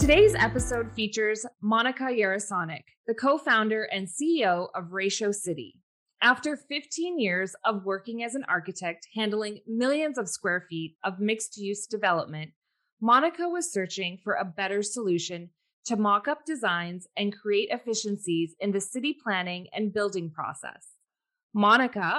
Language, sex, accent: English, female, American